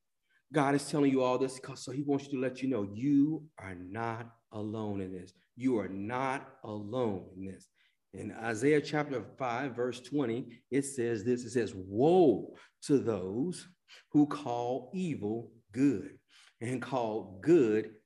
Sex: male